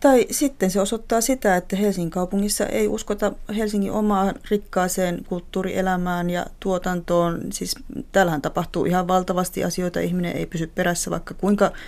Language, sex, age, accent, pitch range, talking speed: Finnish, female, 30-49, native, 170-195 Hz, 140 wpm